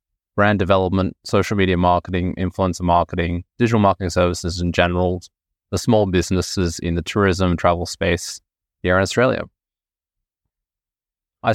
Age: 20-39